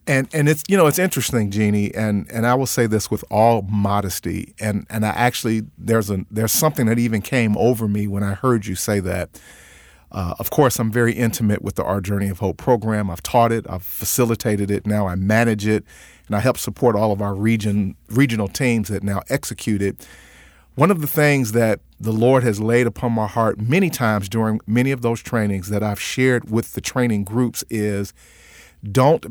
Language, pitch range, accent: English, 105-125 Hz, American